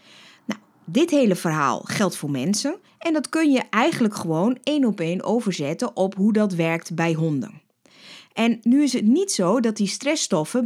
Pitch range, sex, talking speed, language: 165-235 Hz, female, 175 wpm, Dutch